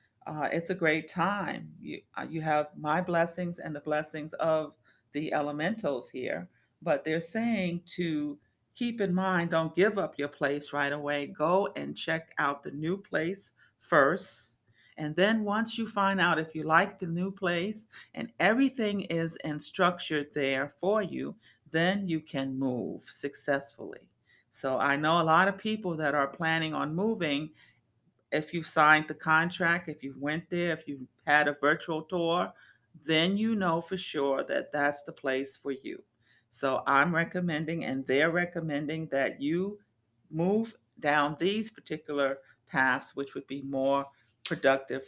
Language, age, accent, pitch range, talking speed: English, 40-59, American, 145-190 Hz, 160 wpm